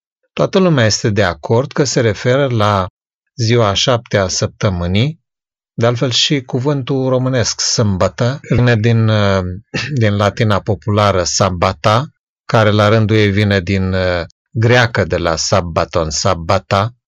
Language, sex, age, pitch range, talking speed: Romanian, male, 30-49, 95-125 Hz, 125 wpm